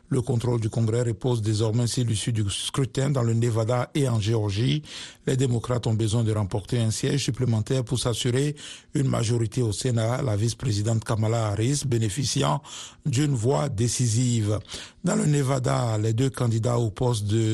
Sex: male